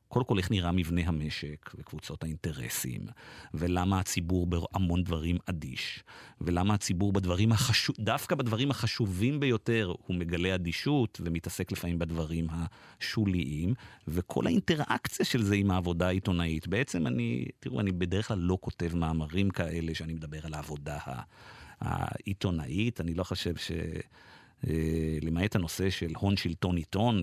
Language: Hebrew